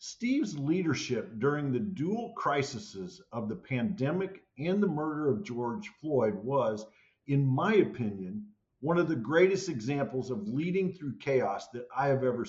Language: English